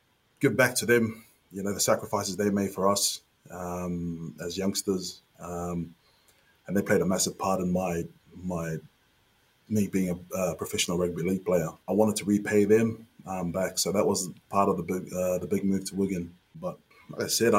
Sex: male